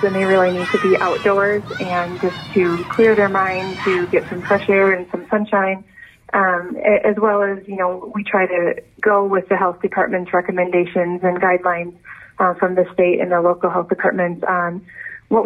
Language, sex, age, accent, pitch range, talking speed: English, female, 30-49, American, 180-200 Hz, 190 wpm